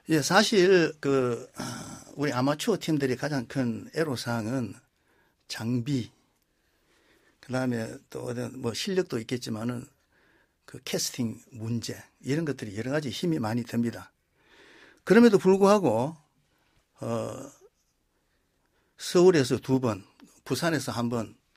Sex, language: male, Korean